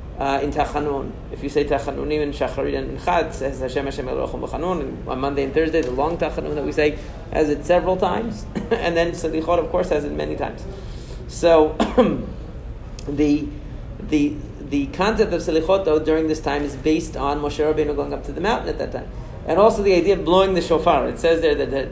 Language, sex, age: English, male, 40-59